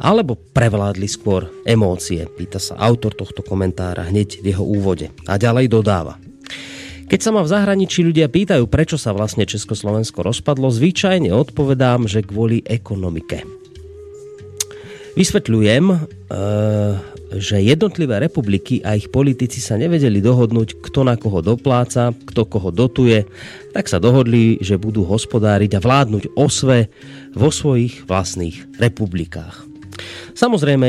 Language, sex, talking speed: Slovak, male, 125 wpm